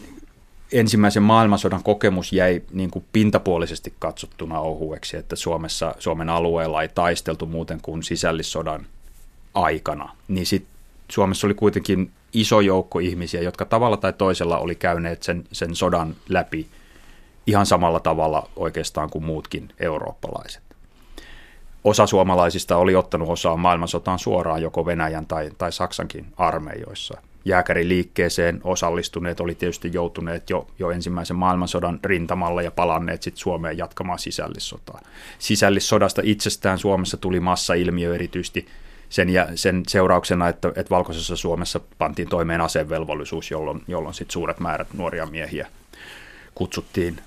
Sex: male